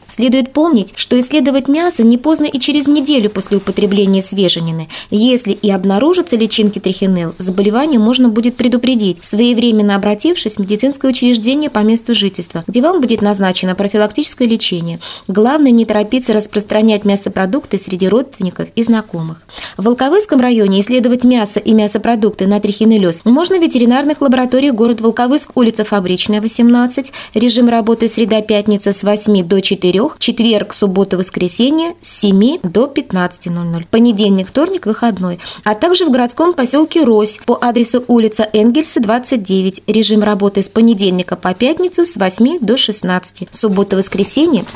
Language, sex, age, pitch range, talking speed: Russian, female, 20-39, 200-250 Hz, 140 wpm